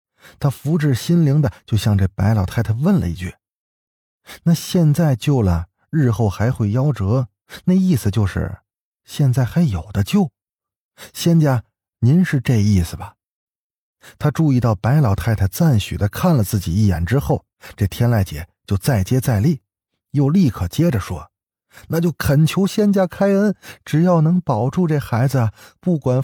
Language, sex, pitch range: Chinese, male, 100-150 Hz